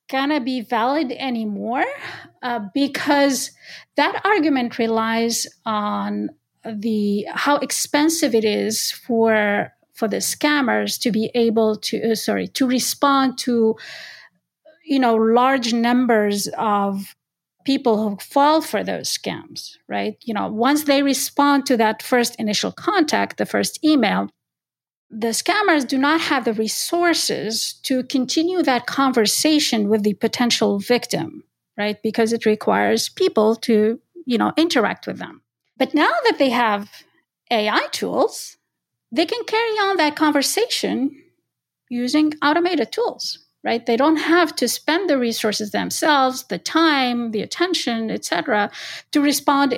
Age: 40-59